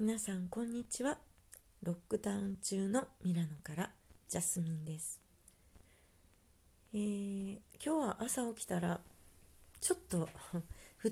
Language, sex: Japanese, female